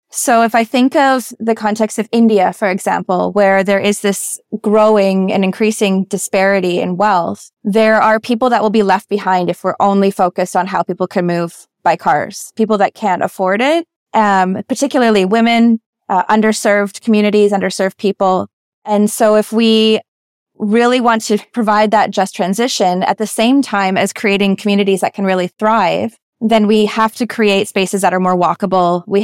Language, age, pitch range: English, 20-39, 190-225 Hz